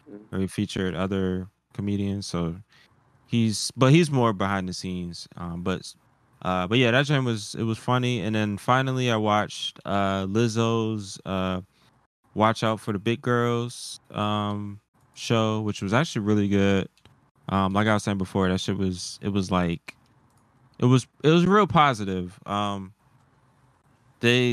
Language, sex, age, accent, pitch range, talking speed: English, male, 10-29, American, 95-115 Hz, 160 wpm